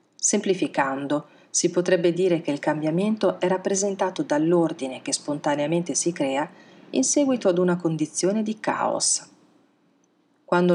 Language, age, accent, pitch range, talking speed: Italian, 40-59, native, 155-195 Hz, 125 wpm